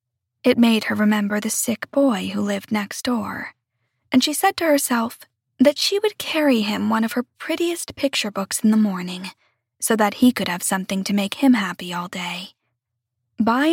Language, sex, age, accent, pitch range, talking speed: English, female, 10-29, American, 200-265 Hz, 190 wpm